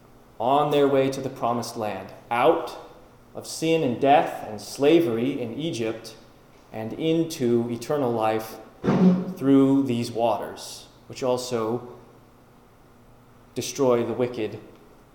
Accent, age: American, 30-49